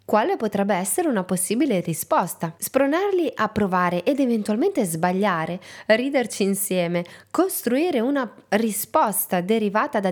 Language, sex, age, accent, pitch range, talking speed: Italian, female, 20-39, native, 180-255 Hz, 115 wpm